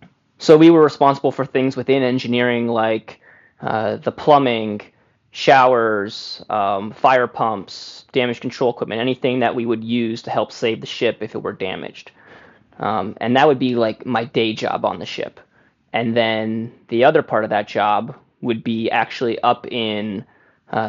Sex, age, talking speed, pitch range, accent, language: male, 20-39, 170 wpm, 110-125 Hz, American, English